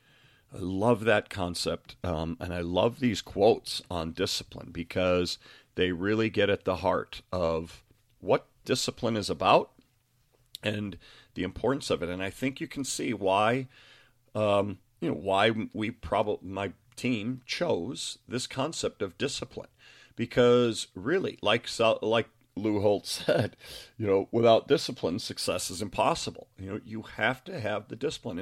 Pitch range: 95-125 Hz